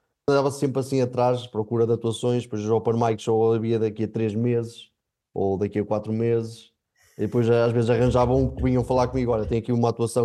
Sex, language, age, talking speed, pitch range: male, Portuguese, 20-39, 215 wpm, 120-145 Hz